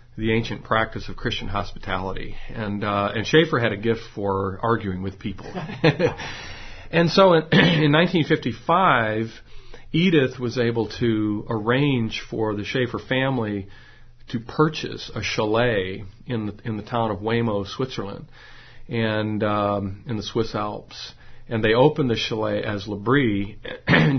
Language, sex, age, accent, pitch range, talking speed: English, male, 40-59, American, 105-125 Hz, 145 wpm